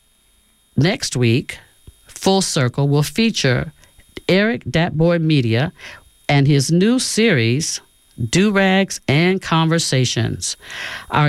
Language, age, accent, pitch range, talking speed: English, 50-69, American, 125-180 Hz, 90 wpm